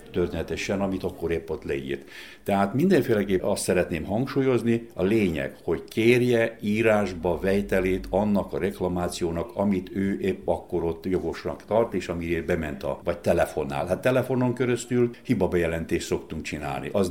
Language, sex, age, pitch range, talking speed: Hungarian, male, 60-79, 90-125 Hz, 145 wpm